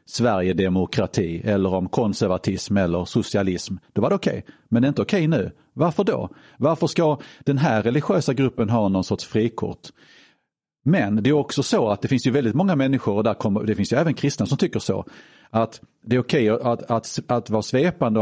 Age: 40-59